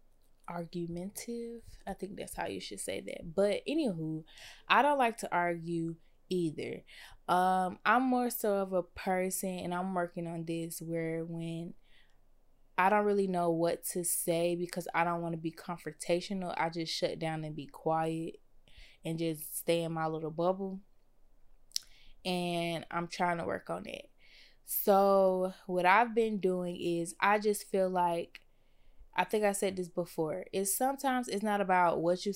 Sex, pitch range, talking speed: female, 165-195 Hz, 165 wpm